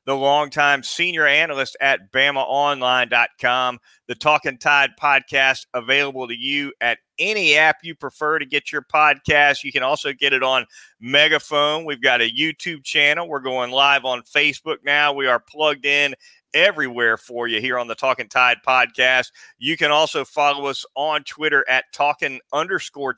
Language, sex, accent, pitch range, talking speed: English, male, American, 130-150 Hz, 165 wpm